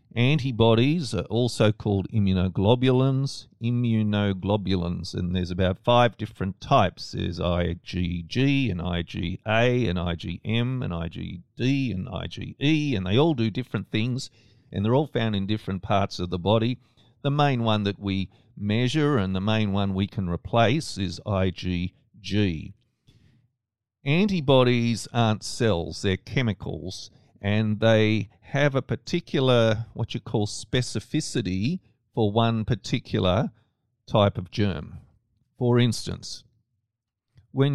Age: 50-69